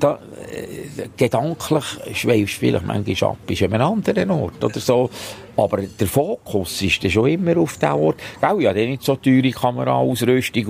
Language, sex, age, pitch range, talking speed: German, male, 60-79, 100-130 Hz, 180 wpm